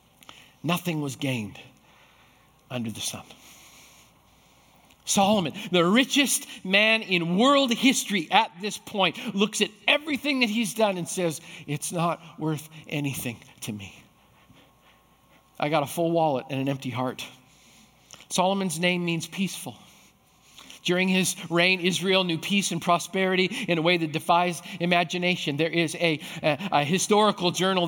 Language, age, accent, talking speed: English, 50-69, American, 140 wpm